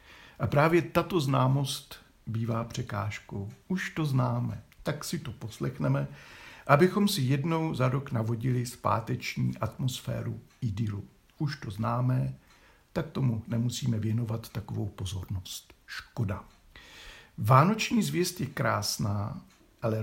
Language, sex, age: Czech, male, 60-79